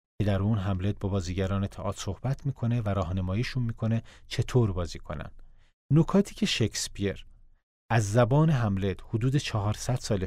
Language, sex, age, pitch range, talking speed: Persian, male, 40-59, 95-120 Hz, 135 wpm